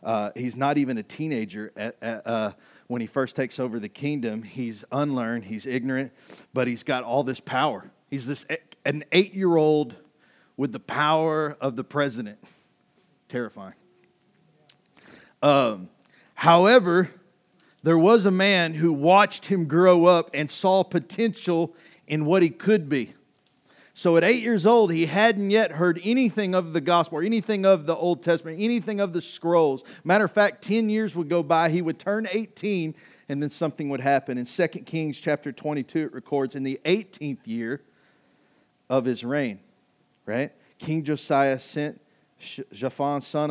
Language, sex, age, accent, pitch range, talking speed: English, male, 40-59, American, 125-170 Hz, 155 wpm